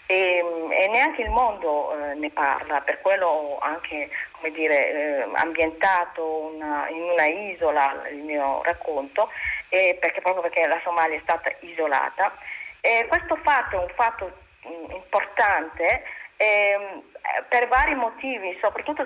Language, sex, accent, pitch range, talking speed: Italian, female, native, 155-205 Hz, 130 wpm